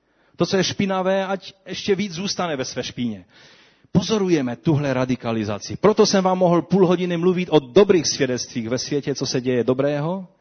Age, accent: 40-59, native